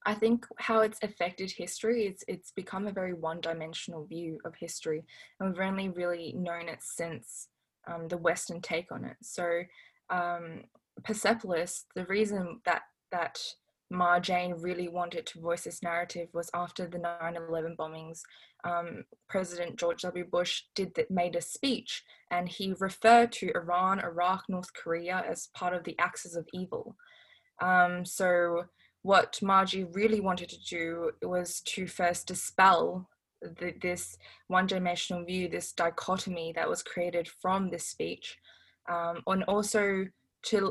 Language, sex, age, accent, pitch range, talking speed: English, female, 20-39, Australian, 175-195 Hz, 145 wpm